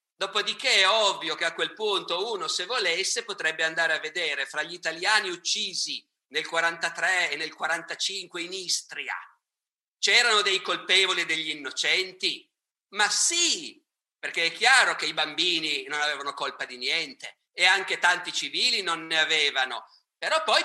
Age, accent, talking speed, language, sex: 50-69, native, 155 wpm, Italian, male